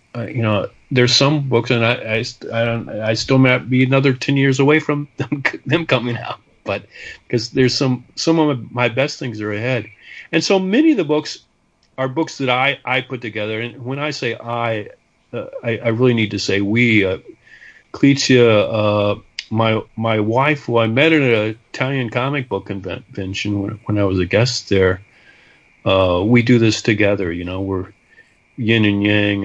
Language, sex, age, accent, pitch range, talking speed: English, male, 40-59, American, 105-135 Hz, 190 wpm